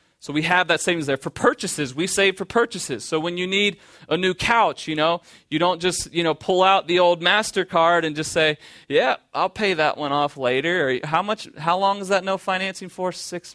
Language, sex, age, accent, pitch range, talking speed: English, male, 30-49, American, 145-180 Hz, 230 wpm